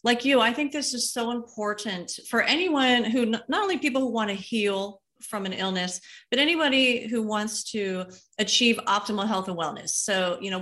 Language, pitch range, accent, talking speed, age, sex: English, 190-235 Hz, American, 190 wpm, 30-49, female